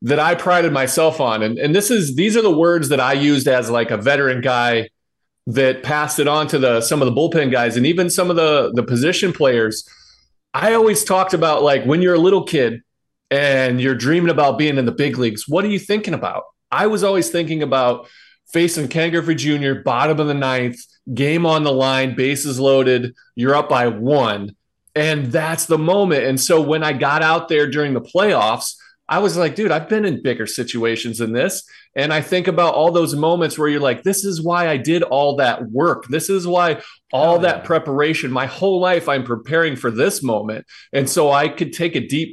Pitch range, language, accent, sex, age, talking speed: 130-170 Hz, English, American, male, 40-59, 215 wpm